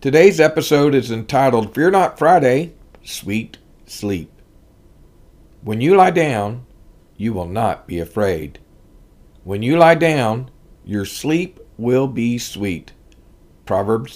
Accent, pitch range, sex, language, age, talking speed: American, 105-145 Hz, male, English, 50-69, 120 wpm